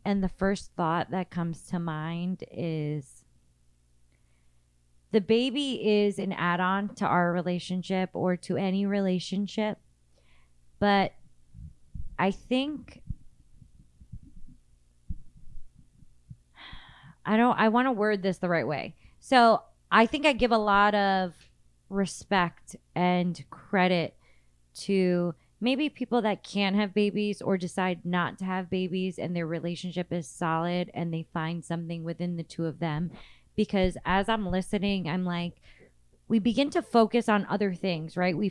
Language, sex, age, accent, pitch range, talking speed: English, female, 20-39, American, 170-205 Hz, 135 wpm